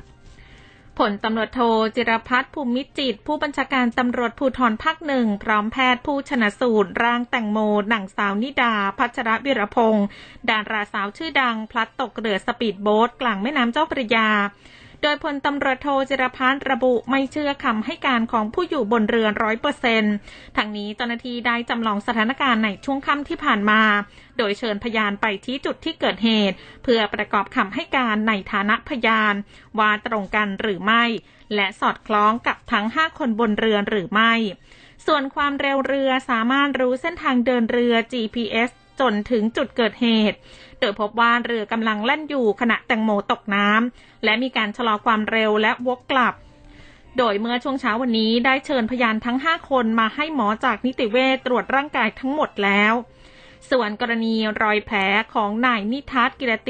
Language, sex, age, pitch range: Thai, female, 20-39, 215-260 Hz